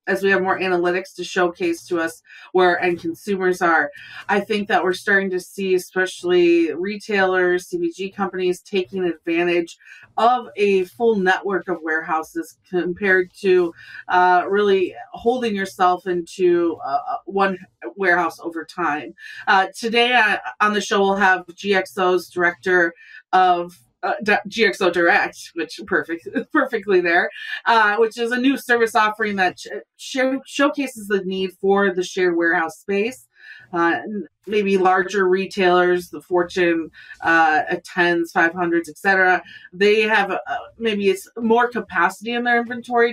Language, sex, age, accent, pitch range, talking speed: English, female, 30-49, American, 175-210 Hz, 140 wpm